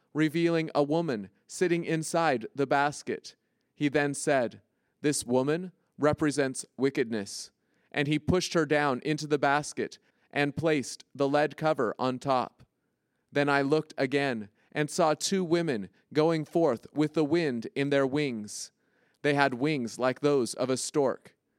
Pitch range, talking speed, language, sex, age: 135-155 Hz, 145 wpm, English, male, 30-49